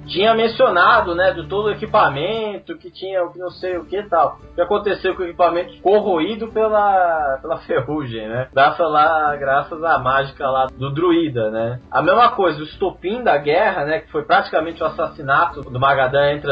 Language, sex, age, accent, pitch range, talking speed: Portuguese, male, 20-39, Brazilian, 145-195 Hz, 185 wpm